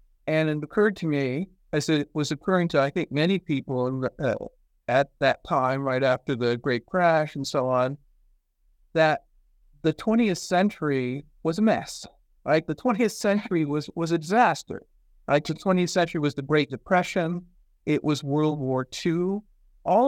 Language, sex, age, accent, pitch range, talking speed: English, male, 50-69, American, 135-170 Hz, 165 wpm